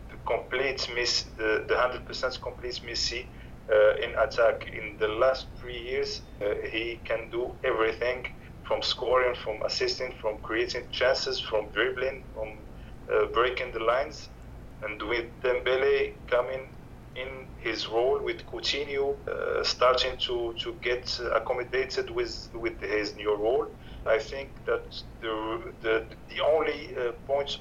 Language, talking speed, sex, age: English, 135 wpm, male, 40-59